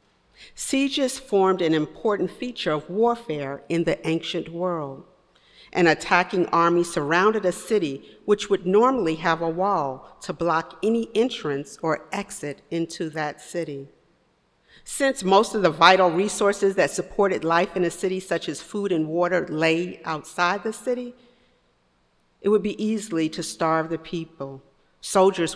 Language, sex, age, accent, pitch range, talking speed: English, female, 50-69, American, 160-200 Hz, 145 wpm